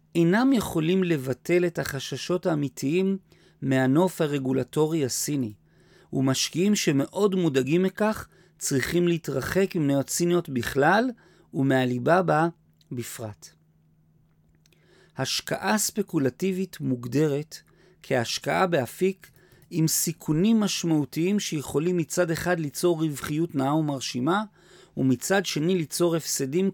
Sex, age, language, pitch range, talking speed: male, 40-59, Hebrew, 135-180 Hz, 90 wpm